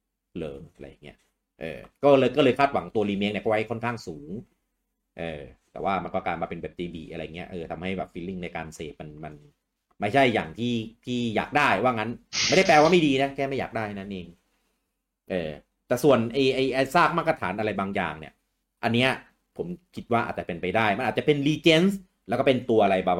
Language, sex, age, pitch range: English, male, 30-49, 90-125 Hz